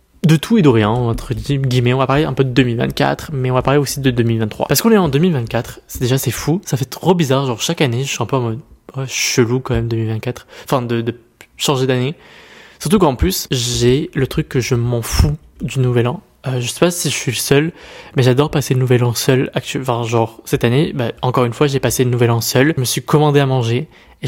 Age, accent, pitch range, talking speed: 20-39, French, 120-155 Hz, 255 wpm